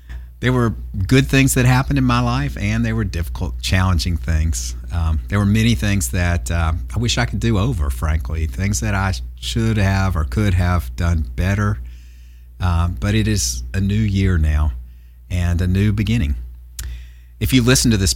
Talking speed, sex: 185 wpm, male